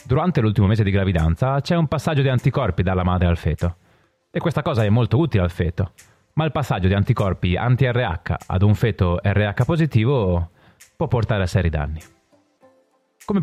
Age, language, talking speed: 30-49, Italian, 175 wpm